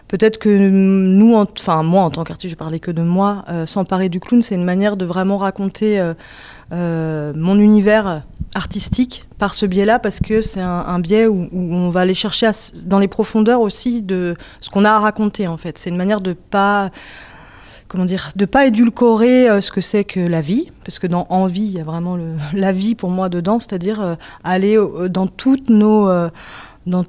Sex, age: female, 30-49